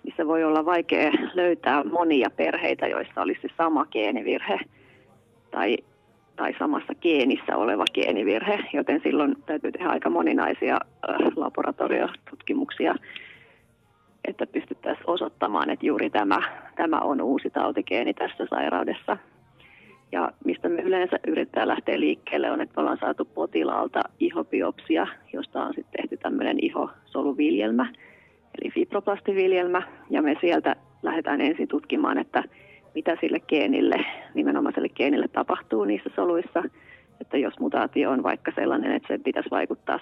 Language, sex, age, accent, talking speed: Finnish, female, 30-49, native, 125 wpm